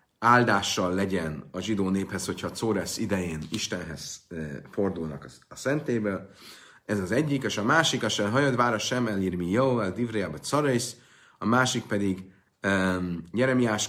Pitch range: 90-115 Hz